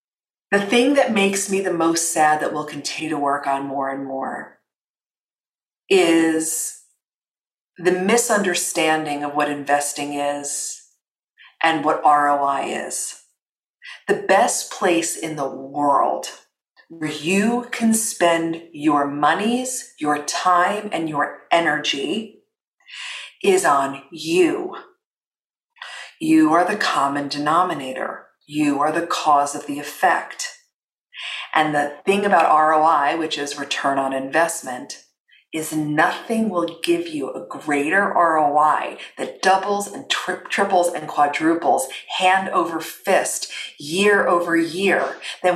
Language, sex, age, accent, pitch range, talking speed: English, female, 40-59, American, 150-200 Hz, 120 wpm